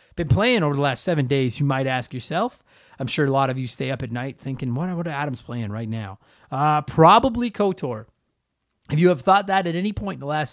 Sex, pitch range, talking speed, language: male, 130-170 Hz, 250 wpm, English